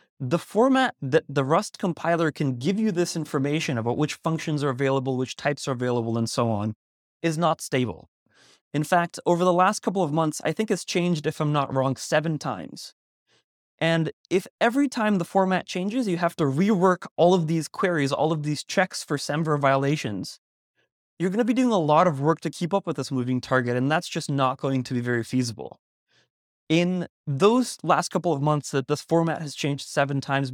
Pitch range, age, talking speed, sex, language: 140-180 Hz, 20-39, 200 wpm, male, English